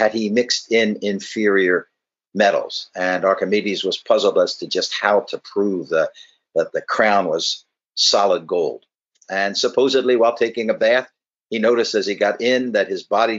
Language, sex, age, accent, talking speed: English, male, 50-69, American, 165 wpm